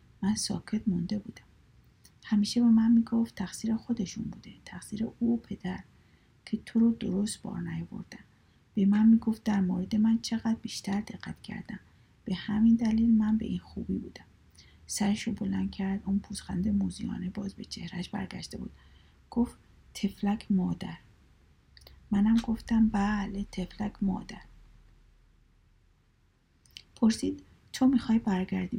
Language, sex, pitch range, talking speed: Persian, female, 190-225 Hz, 125 wpm